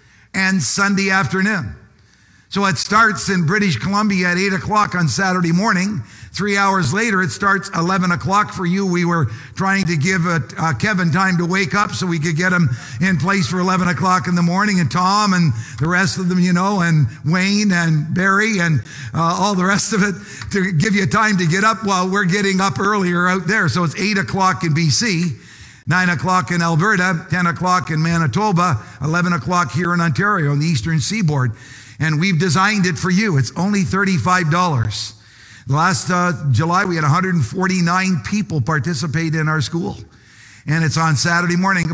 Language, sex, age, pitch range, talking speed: English, male, 60-79, 155-190 Hz, 185 wpm